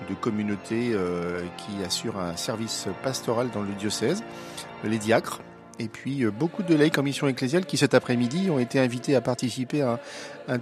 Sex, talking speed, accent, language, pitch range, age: male, 185 wpm, French, French, 110-140 Hz, 40-59